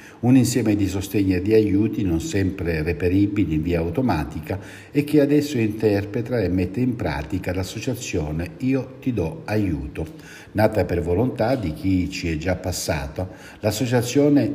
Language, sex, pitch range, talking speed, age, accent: Italian, male, 85-110 Hz, 150 wpm, 60-79, native